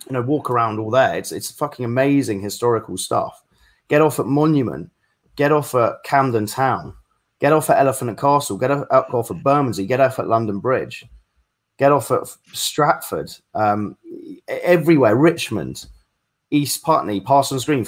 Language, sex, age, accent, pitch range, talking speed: English, male, 30-49, British, 105-140 Hz, 160 wpm